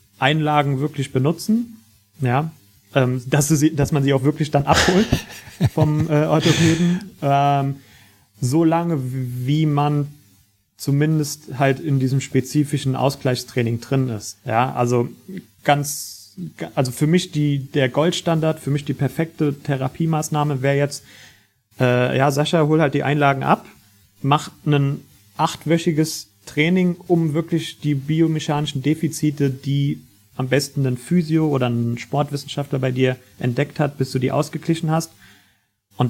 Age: 30-49